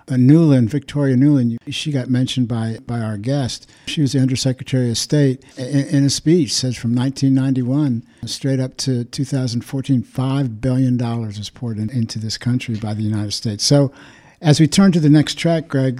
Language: English